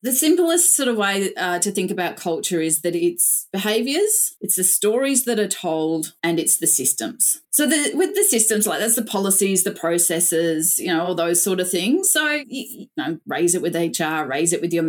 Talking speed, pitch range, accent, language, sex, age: 210 wpm, 180-250 Hz, Australian, English, female, 30-49